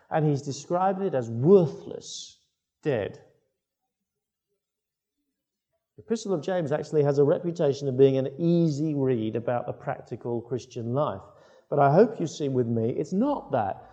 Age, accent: 50-69, British